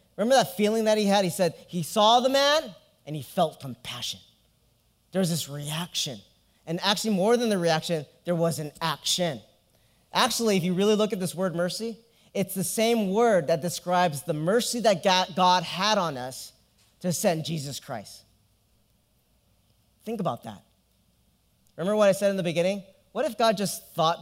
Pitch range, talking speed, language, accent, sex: 145-210 Hz, 175 wpm, English, American, male